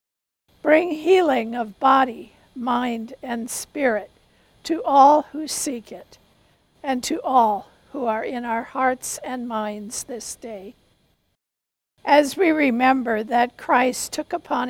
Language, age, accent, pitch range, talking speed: English, 60-79, American, 230-275 Hz, 125 wpm